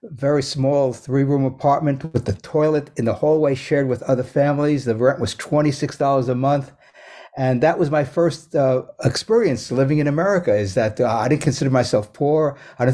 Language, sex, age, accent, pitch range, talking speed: English, male, 60-79, American, 120-150 Hz, 190 wpm